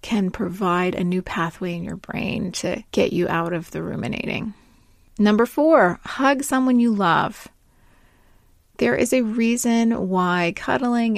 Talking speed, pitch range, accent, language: 145 wpm, 185-230 Hz, American, English